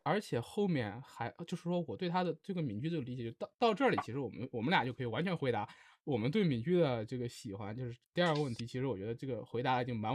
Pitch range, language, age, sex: 120-195 Hz, Chinese, 20-39, male